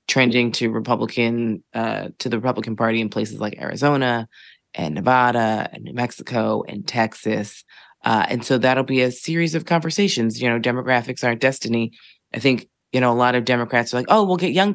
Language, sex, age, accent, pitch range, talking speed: English, female, 20-39, American, 120-150 Hz, 190 wpm